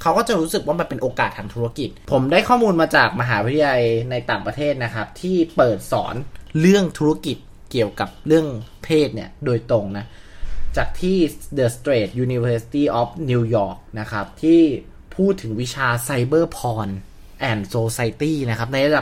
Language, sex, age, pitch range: Thai, male, 20-39, 115-165 Hz